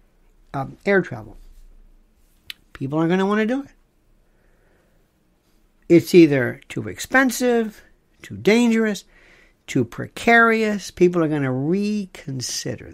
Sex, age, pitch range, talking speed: male, 60-79, 140-200 Hz, 110 wpm